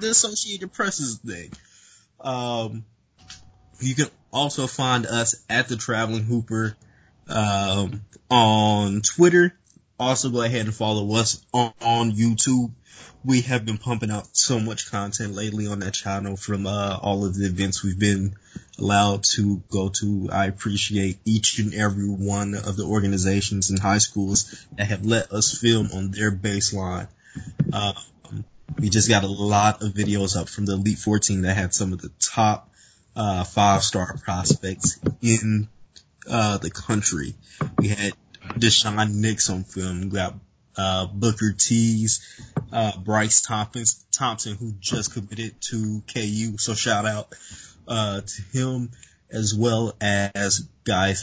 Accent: American